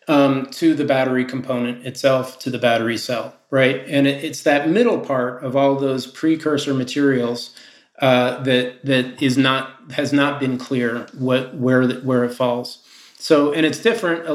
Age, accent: 30-49, American